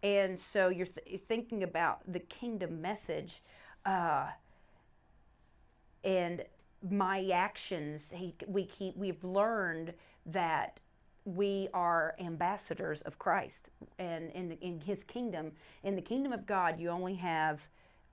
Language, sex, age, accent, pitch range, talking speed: English, female, 40-59, American, 170-195 Hz, 130 wpm